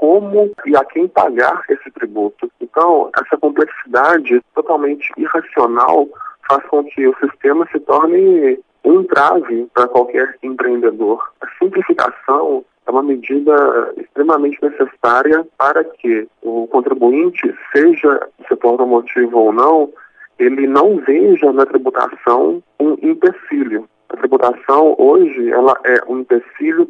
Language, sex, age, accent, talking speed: English, male, 40-59, Brazilian, 125 wpm